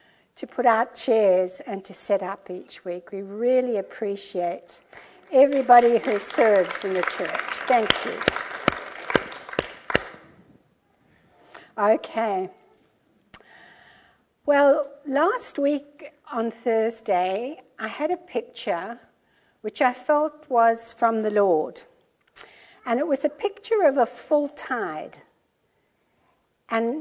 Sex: female